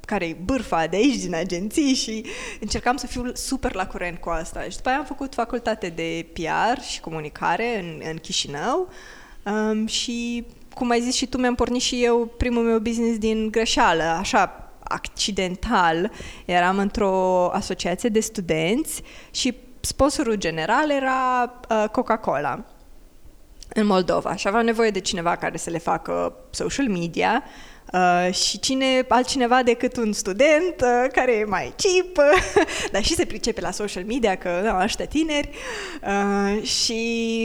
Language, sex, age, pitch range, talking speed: Romanian, female, 20-39, 190-250 Hz, 155 wpm